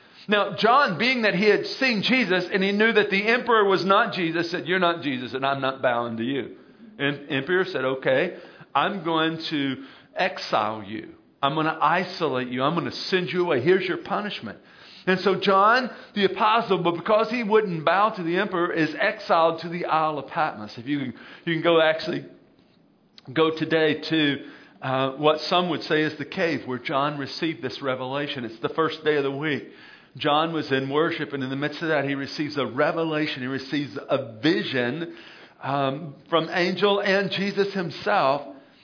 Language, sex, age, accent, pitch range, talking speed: English, male, 50-69, American, 145-185 Hz, 190 wpm